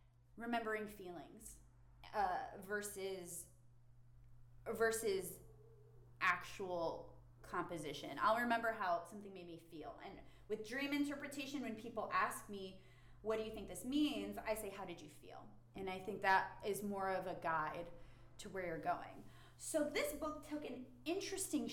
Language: English